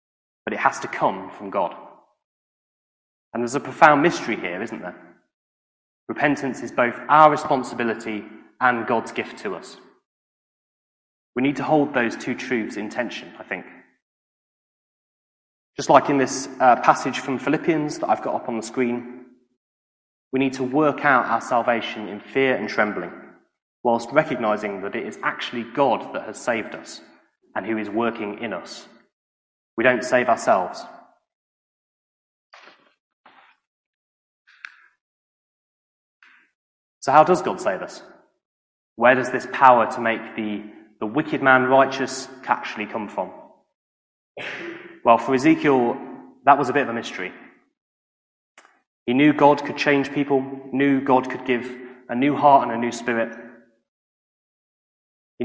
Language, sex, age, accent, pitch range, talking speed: English, male, 20-39, British, 110-135 Hz, 140 wpm